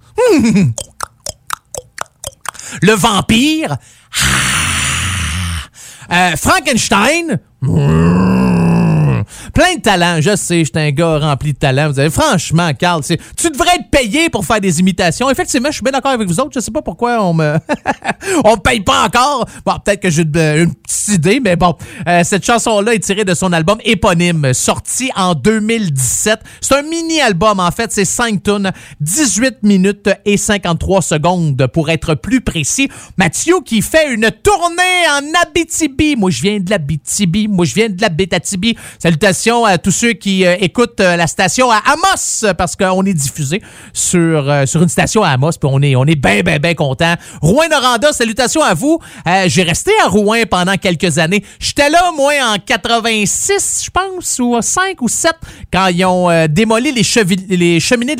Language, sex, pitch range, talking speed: French, male, 170-245 Hz, 175 wpm